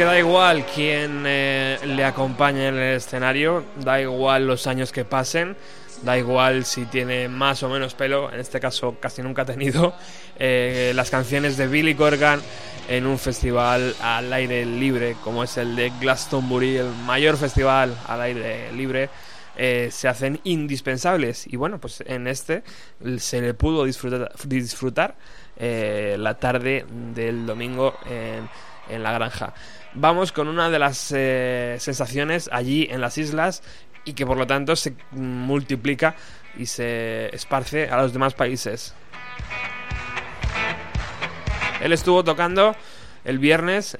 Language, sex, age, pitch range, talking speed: Spanish, male, 20-39, 125-145 Hz, 145 wpm